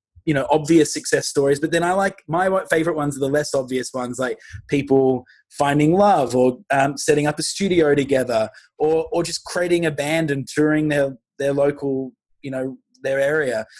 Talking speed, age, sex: 185 wpm, 20-39, male